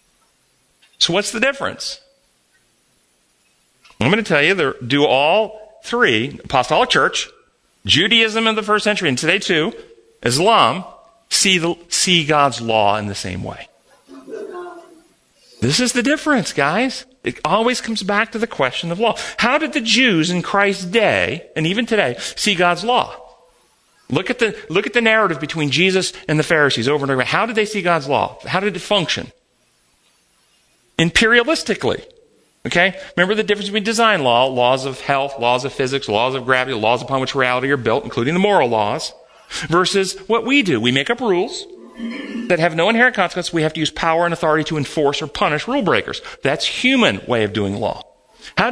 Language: English